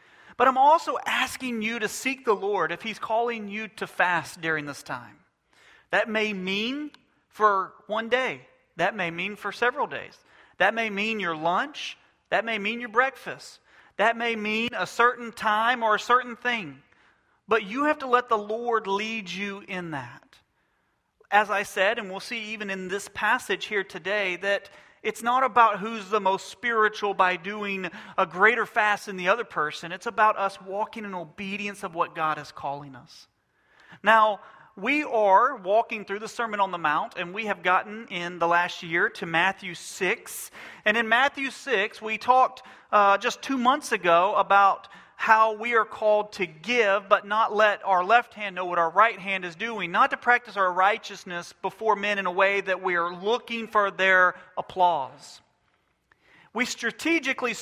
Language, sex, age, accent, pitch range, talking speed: English, male, 40-59, American, 190-230 Hz, 180 wpm